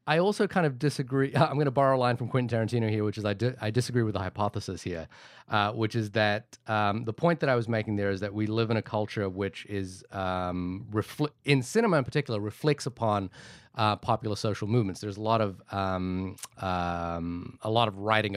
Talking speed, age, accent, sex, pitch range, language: 220 wpm, 30-49, American, male, 95-115 Hz, English